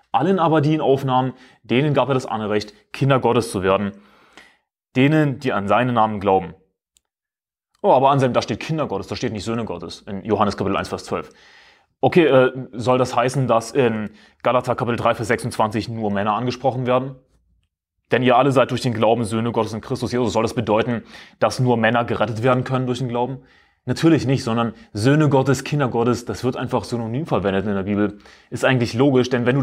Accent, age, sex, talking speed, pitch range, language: German, 20-39, male, 200 wpm, 105-130 Hz, German